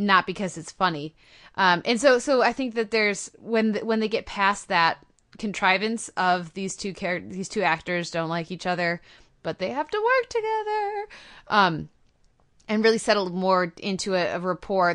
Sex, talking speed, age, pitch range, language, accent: female, 185 wpm, 20-39, 175-210 Hz, English, American